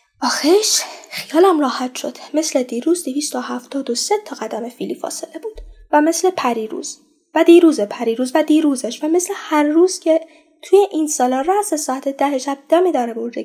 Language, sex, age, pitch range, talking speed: Persian, female, 10-29, 255-345 Hz, 155 wpm